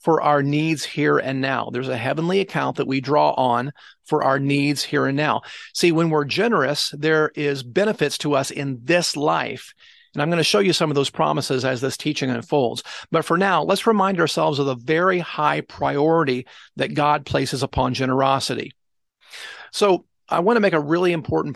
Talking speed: 195 wpm